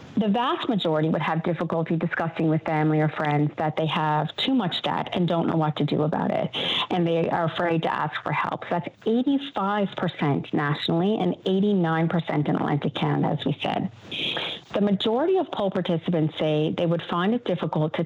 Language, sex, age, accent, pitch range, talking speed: English, female, 40-59, American, 160-205 Hz, 190 wpm